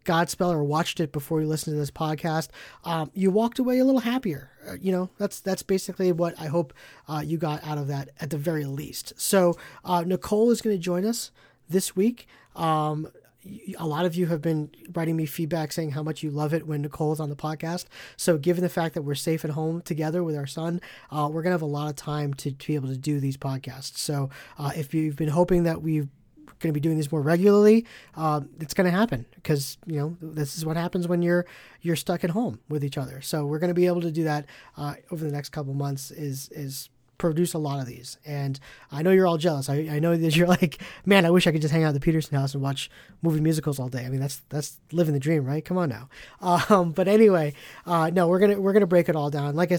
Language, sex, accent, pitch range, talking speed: English, male, American, 145-175 Hz, 255 wpm